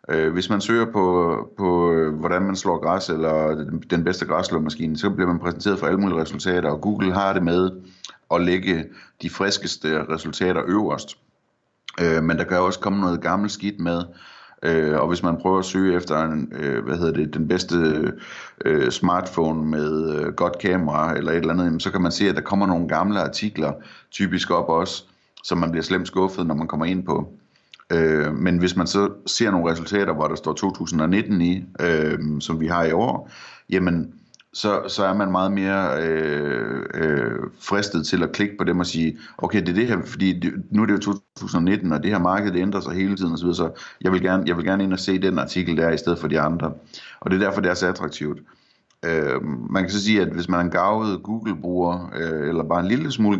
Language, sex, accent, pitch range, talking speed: Danish, male, native, 80-95 Hz, 210 wpm